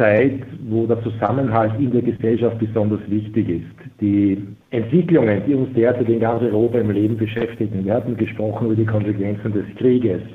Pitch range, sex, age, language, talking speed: 110-130 Hz, male, 50-69, German, 170 wpm